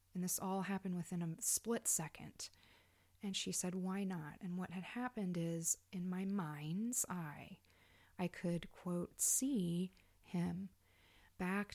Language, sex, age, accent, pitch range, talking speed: English, female, 30-49, American, 160-185 Hz, 145 wpm